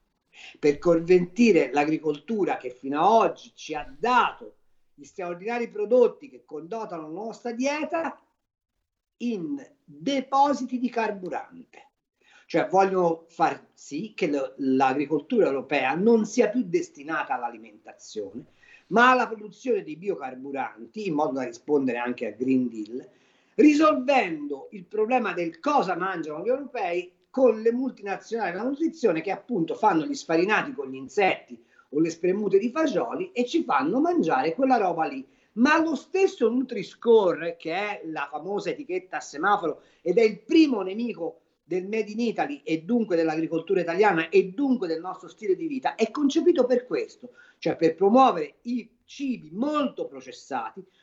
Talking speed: 145 wpm